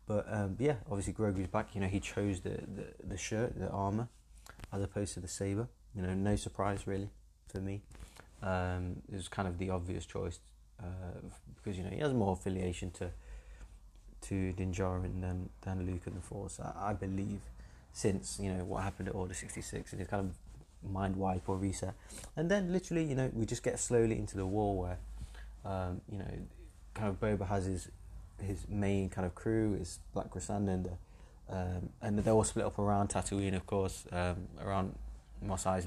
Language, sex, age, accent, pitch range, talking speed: English, male, 20-39, British, 90-105 Hz, 195 wpm